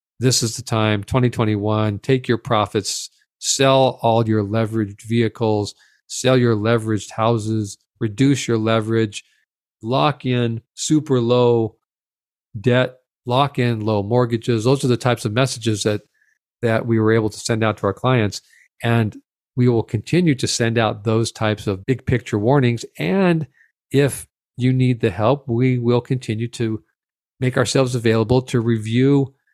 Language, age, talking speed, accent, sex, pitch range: English, 40-59, 150 wpm, American, male, 110-130 Hz